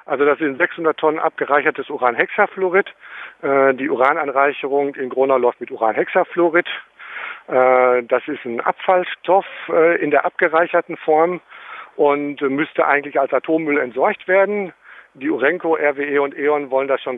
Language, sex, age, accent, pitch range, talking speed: German, male, 50-69, German, 140-170 Hz, 140 wpm